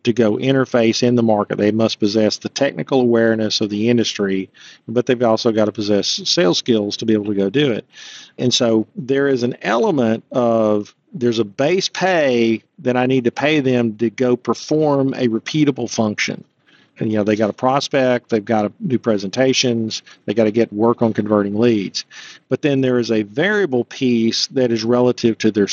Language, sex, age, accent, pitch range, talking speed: English, male, 50-69, American, 110-130 Hz, 200 wpm